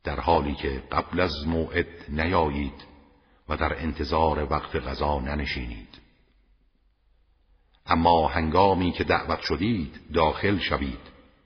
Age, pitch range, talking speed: 60-79, 70-85 Hz, 105 wpm